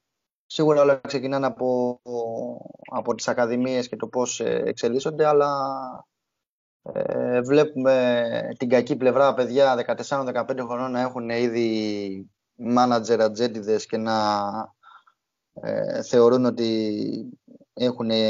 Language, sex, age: Greek, male, 20-39